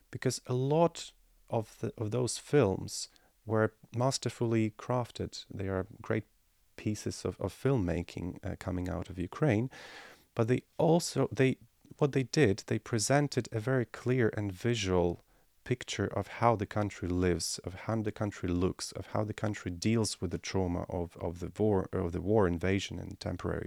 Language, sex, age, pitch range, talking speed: English, male, 30-49, 95-120 Hz, 165 wpm